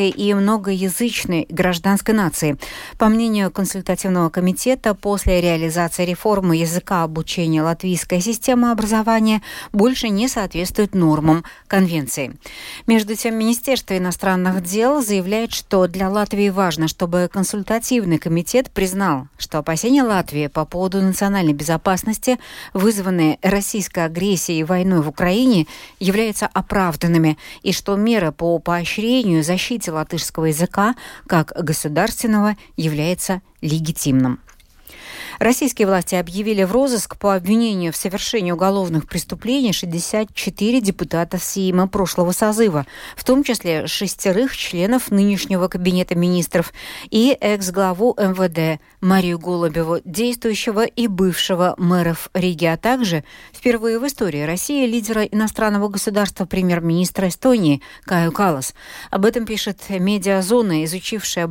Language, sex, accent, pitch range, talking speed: Russian, female, native, 175-220 Hz, 110 wpm